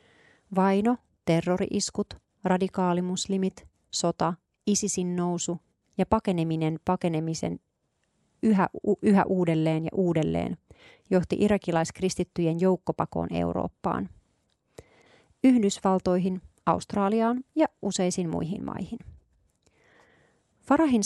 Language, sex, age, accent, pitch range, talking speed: Finnish, female, 30-49, native, 170-200 Hz, 70 wpm